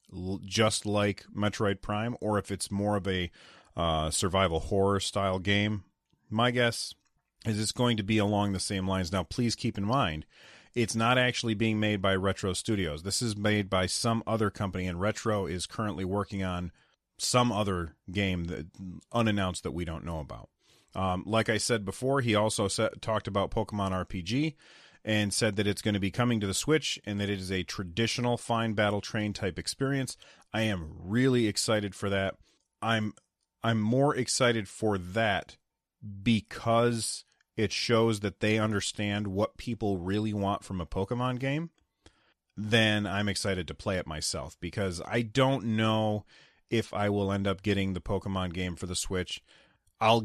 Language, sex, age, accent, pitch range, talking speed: English, male, 30-49, American, 95-115 Hz, 175 wpm